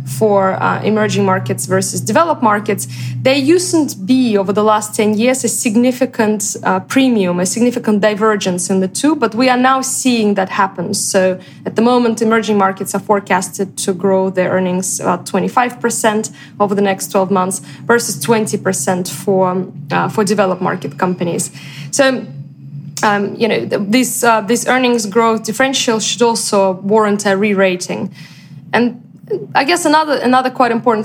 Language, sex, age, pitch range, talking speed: English, female, 20-39, 190-230 Hz, 160 wpm